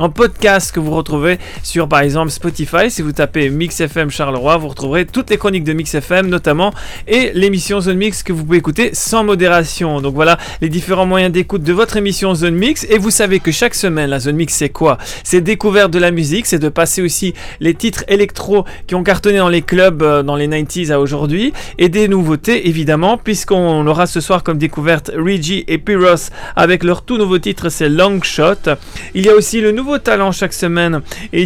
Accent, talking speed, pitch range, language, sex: French, 210 wpm, 155-195 Hz, French, male